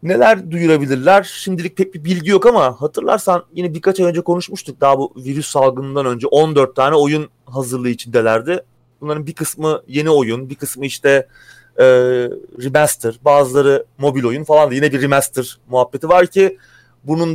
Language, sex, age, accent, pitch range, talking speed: Turkish, male, 30-49, native, 125-160 Hz, 160 wpm